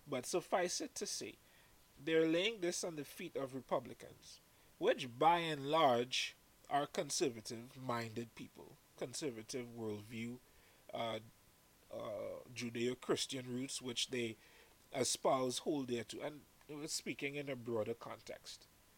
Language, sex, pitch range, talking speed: English, male, 125-160 Hz, 120 wpm